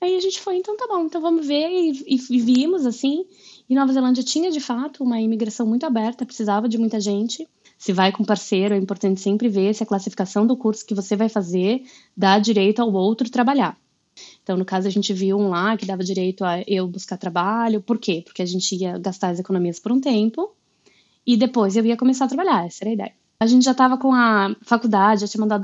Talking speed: 230 wpm